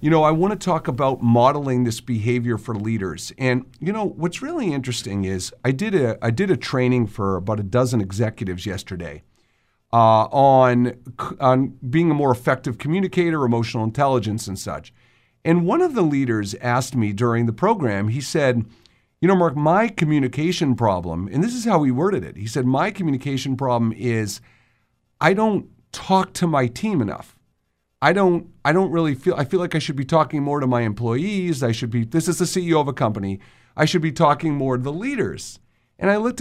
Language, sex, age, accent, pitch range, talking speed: English, male, 50-69, American, 115-170 Hz, 200 wpm